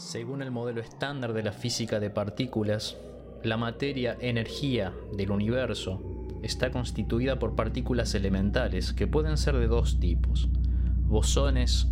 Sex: male